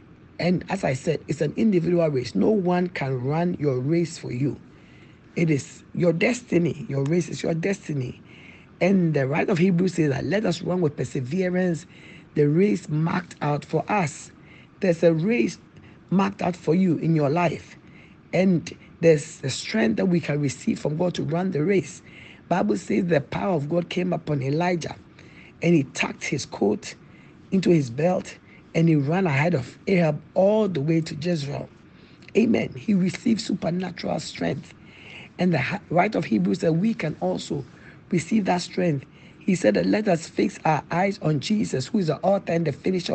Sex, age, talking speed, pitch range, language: male, 60-79, 180 wpm, 150-185 Hz, English